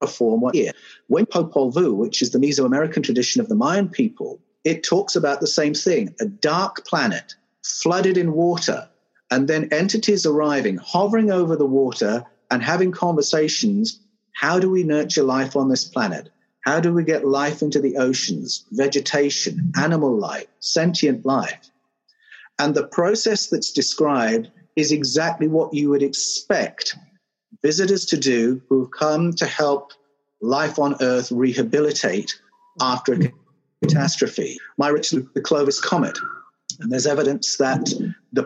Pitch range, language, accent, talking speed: 140-200 Hz, English, British, 150 wpm